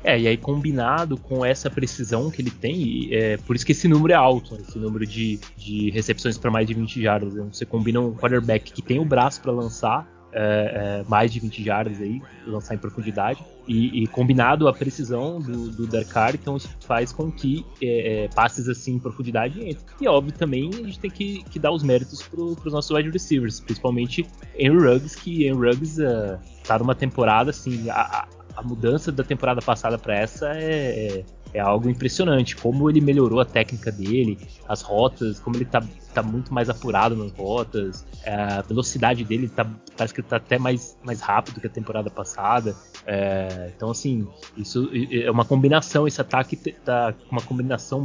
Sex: male